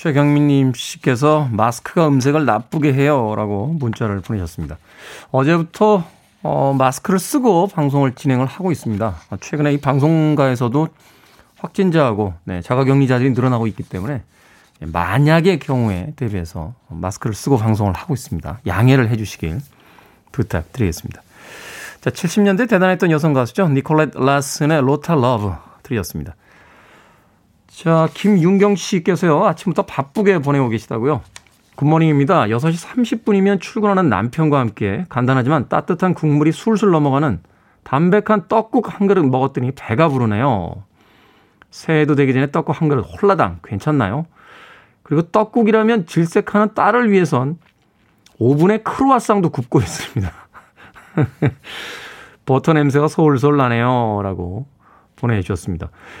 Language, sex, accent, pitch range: Korean, male, native, 120-170 Hz